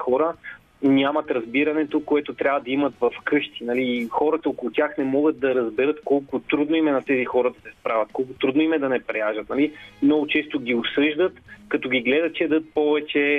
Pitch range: 130-155 Hz